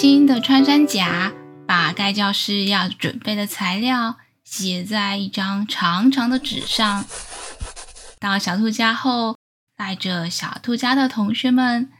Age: 10-29